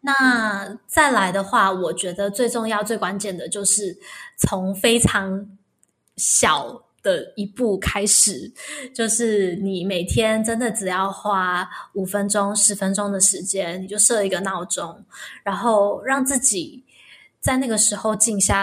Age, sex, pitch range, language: 10-29, female, 195-235 Hz, Chinese